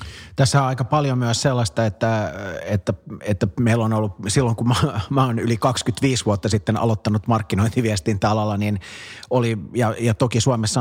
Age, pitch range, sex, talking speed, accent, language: 30-49, 105-120 Hz, male, 160 wpm, native, Finnish